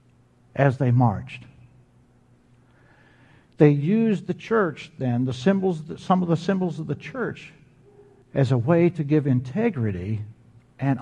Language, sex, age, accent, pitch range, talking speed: English, male, 60-79, American, 120-155 Hz, 130 wpm